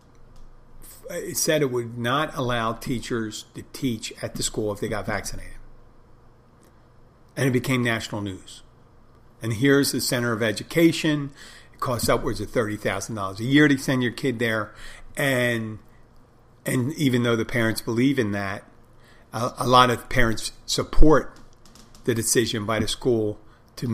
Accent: American